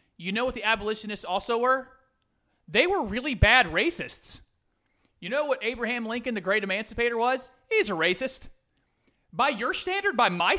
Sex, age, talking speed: male, 40-59, 165 wpm